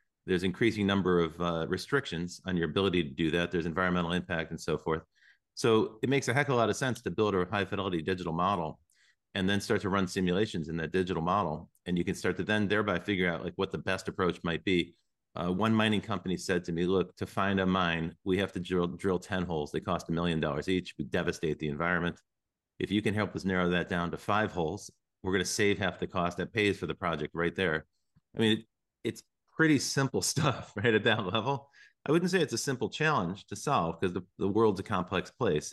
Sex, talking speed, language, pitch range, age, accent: male, 235 wpm, English, 85-105 Hz, 40-59, American